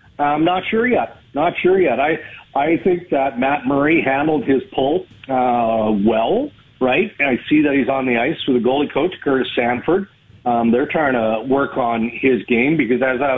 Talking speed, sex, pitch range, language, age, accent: 195 wpm, male, 120-150 Hz, English, 50-69, American